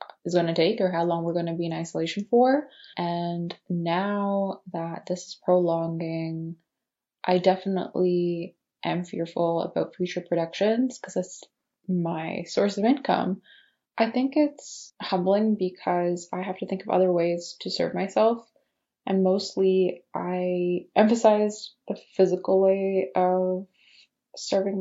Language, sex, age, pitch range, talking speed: English, female, 20-39, 170-195 Hz, 140 wpm